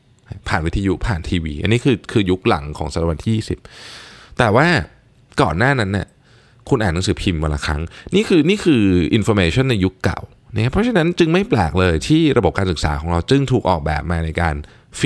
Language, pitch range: Thai, 85-135 Hz